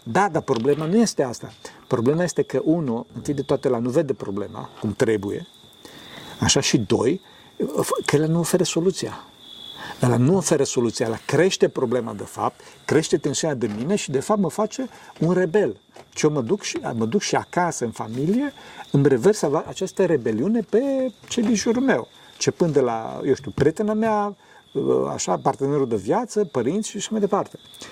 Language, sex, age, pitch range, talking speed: Romanian, male, 50-69, 135-205 Hz, 175 wpm